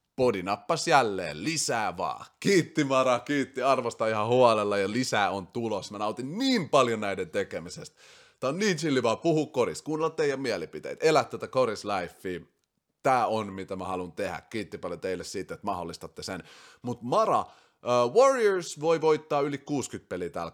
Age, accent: 30-49, native